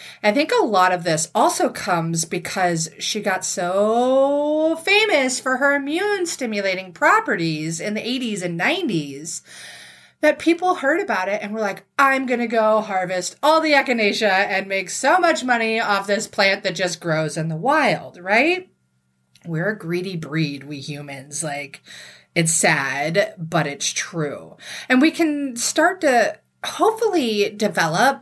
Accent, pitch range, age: American, 165-250 Hz, 30-49